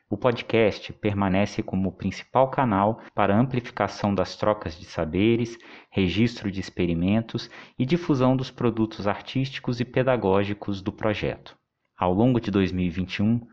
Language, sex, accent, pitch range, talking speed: Portuguese, male, Brazilian, 95-115 Hz, 130 wpm